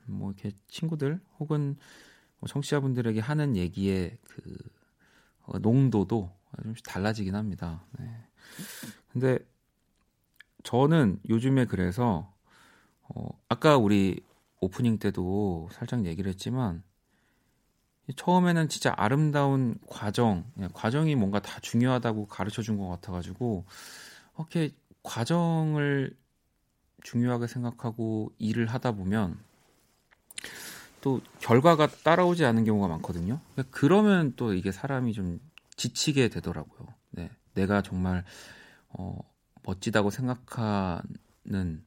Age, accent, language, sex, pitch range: 30-49, native, Korean, male, 95-130 Hz